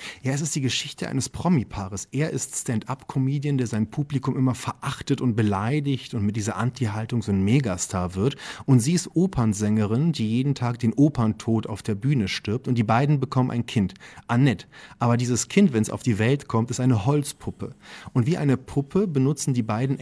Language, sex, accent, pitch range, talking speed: German, male, German, 110-135 Hz, 190 wpm